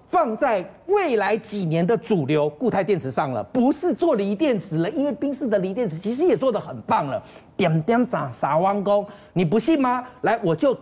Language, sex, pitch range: Chinese, male, 205-315 Hz